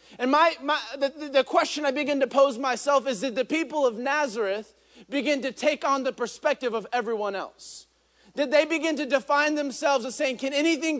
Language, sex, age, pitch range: English, male, 30-49, 240-295 Hz